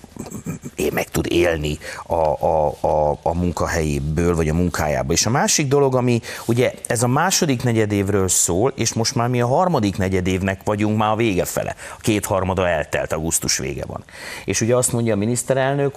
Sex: male